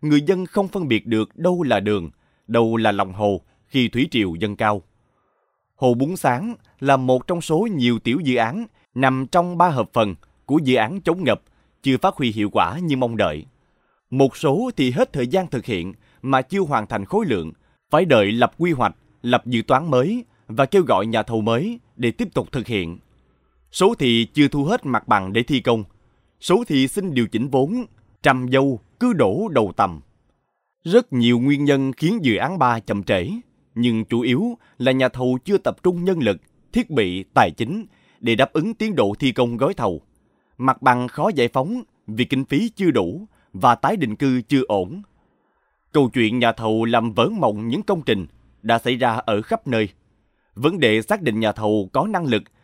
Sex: male